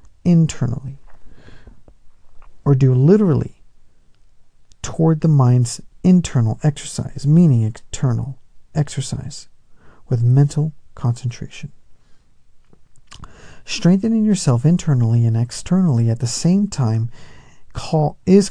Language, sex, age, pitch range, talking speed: English, male, 50-69, 125-155 Hz, 85 wpm